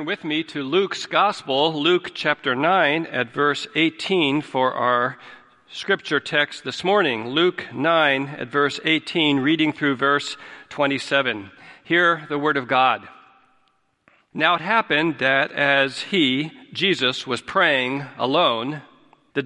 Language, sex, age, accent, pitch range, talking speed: English, male, 50-69, American, 130-170 Hz, 130 wpm